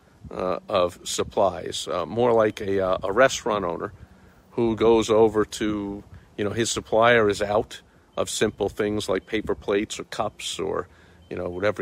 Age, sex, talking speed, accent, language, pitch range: 50-69, male, 170 wpm, American, English, 95-130 Hz